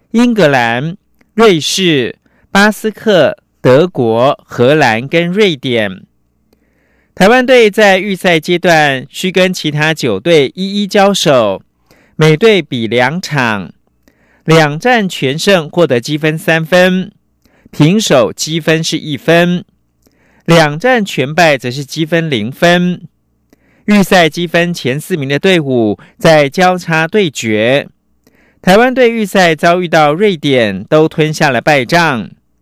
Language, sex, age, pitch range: French, male, 50-69, 135-185 Hz